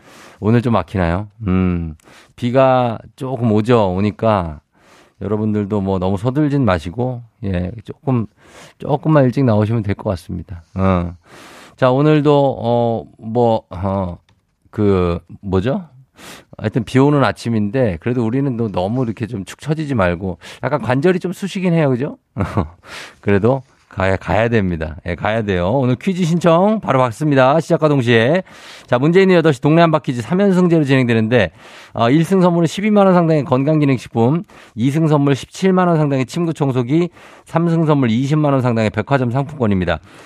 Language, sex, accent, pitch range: Korean, male, native, 105-155 Hz